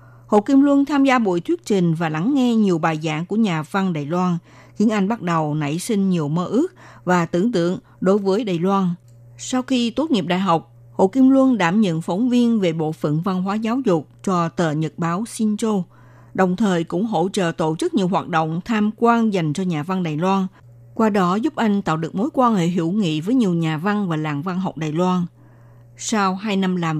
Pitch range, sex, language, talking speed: 165-215 Hz, female, Vietnamese, 230 wpm